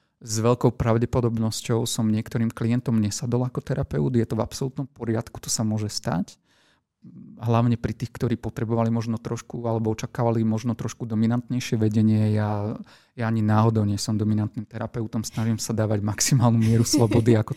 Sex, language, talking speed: male, Slovak, 155 wpm